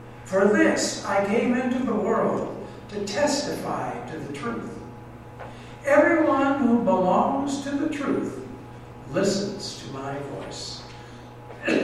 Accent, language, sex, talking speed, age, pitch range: American, English, male, 110 wpm, 60-79, 120-195 Hz